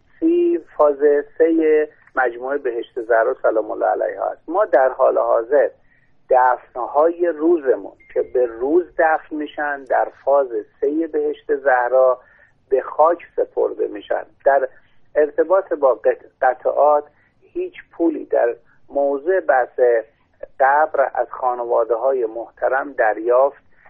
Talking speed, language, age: 105 wpm, Persian, 50-69